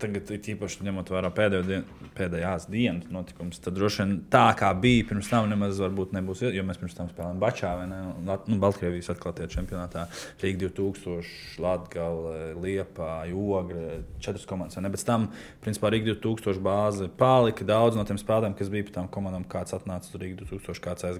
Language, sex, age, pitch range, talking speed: English, male, 20-39, 90-105 Hz, 145 wpm